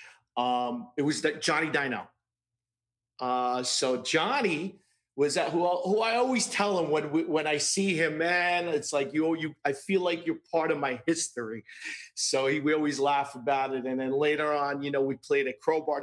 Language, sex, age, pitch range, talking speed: English, male, 40-59, 130-165 Hz, 200 wpm